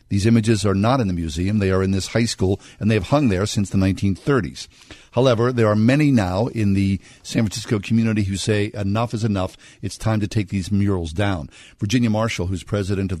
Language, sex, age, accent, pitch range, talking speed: English, male, 50-69, American, 100-120 Hz, 220 wpm